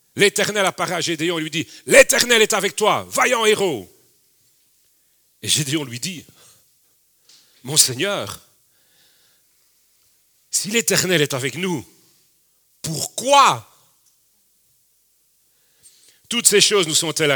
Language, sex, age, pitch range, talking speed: French, male, 40-59, 130-195 Hz, 105 wpm